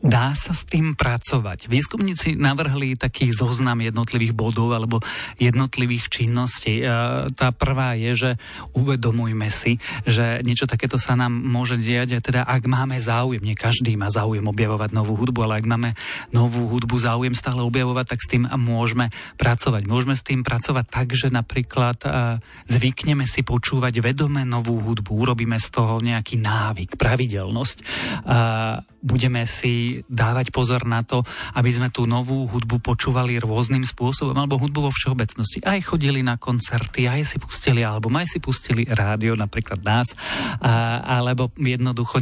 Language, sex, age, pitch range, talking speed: Slovak, male, 30-49, 115-130 Hz, 150 wpm